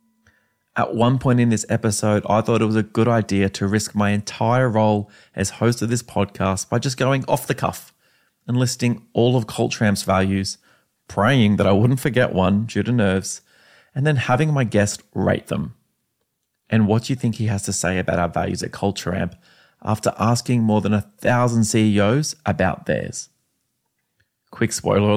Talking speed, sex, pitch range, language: 180 wpm, male, 100-125 Hz, English